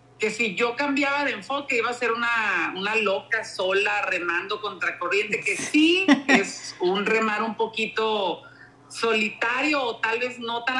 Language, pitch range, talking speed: Spanish, 220-275 Hz, 155 wpm